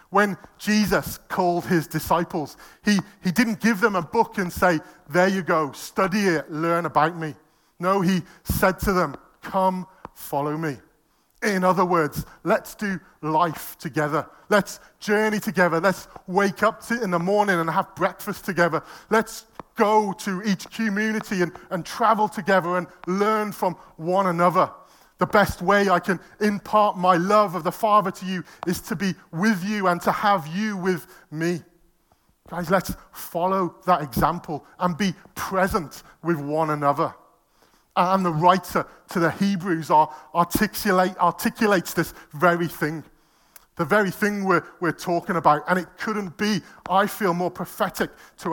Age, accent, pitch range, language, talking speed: 40-59, British, 165-200 Hz, English, 155 wpm